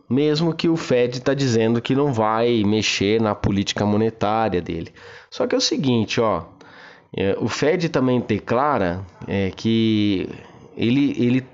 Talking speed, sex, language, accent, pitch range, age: 130 wpm, male, Portuguese, Brazilian, 105-130 Hz, 20-39